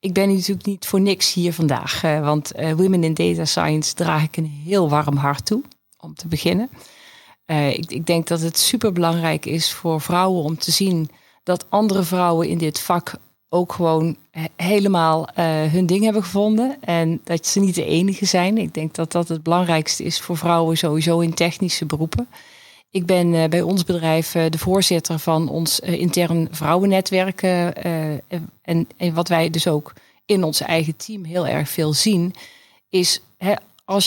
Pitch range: 165-195 Hz